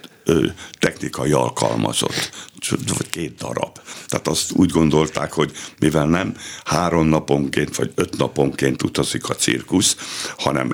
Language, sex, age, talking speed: Hungarian, male, 60-79, 115 wpm